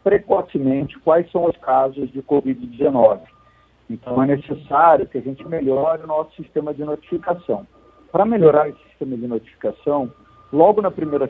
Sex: male